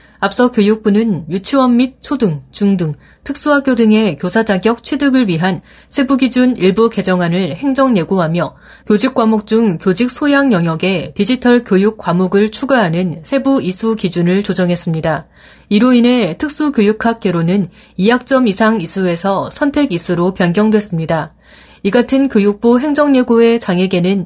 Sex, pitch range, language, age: female, 185-250 Hz, Korean, 30-49